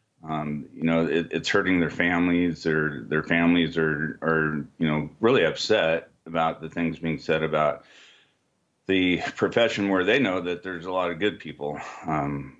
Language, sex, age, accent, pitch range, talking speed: English, male, 40-59, American, 80-95 Hz, 165 wpm